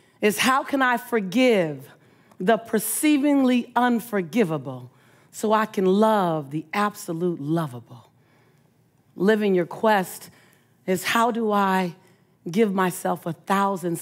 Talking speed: 110 wpm